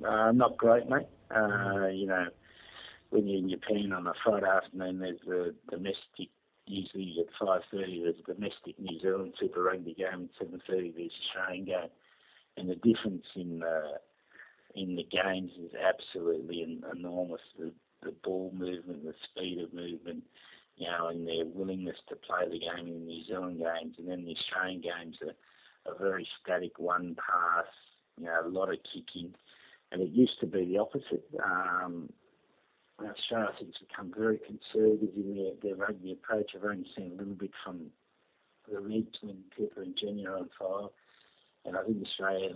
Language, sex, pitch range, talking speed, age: English, male, 90-105 Hz, 180 wpm, 50-69